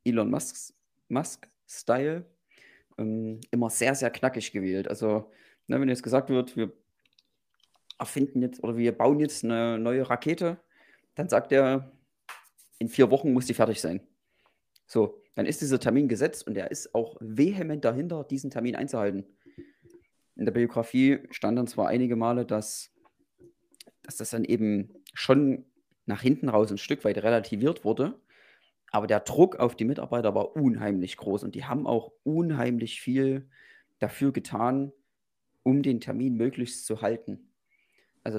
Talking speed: 145 wpm